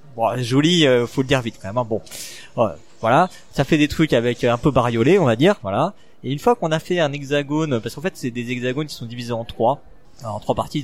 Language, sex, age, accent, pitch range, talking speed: French, male, 30-49, French, 120-160 Hz, 245 wpm